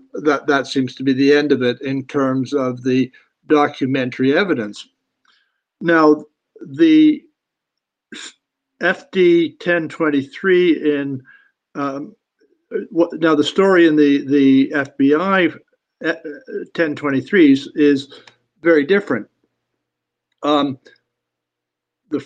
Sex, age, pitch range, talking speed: male, 60-79, 135-160 Hz, 90 wpm